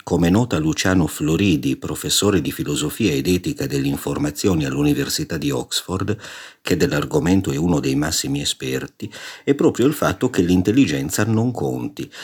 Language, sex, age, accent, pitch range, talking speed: Italian, male, 50-69, native, 85-115 Hz, 135 wpm